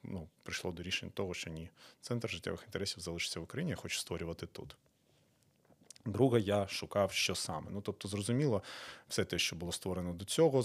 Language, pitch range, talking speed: Ukrainian, 85-105 Hz, 180 wpm